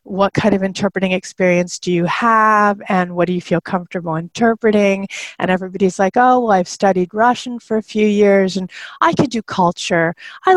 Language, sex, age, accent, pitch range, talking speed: English, female, 40-59, American, 175-210 Hz, 185 wpm